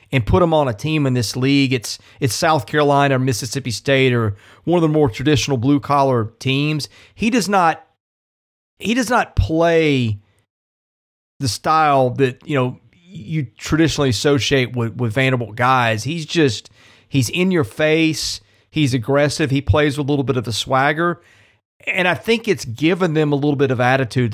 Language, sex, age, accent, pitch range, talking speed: English, male, 30-49, American, 110-150 Hz, 175 wpm